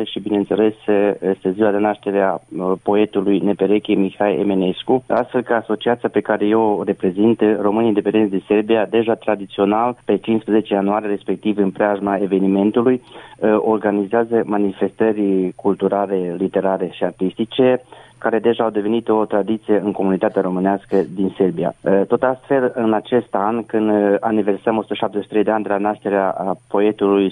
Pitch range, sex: 100-115 Hz, male